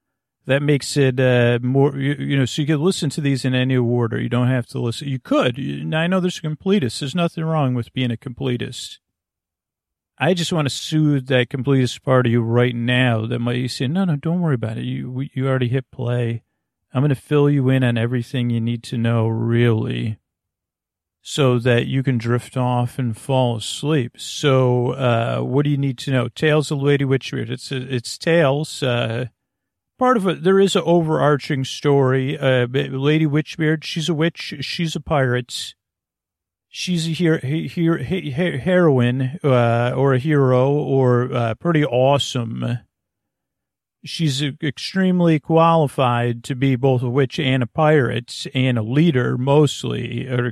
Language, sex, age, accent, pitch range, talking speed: English, male, 40-59, American, 120-155 Hz, 180 wpm